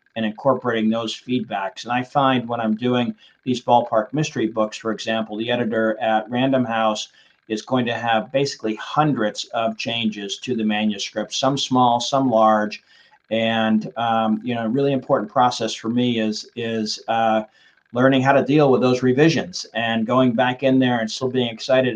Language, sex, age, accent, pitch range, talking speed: English, male, 50-69, American, 110-135 Hz, 180 wpm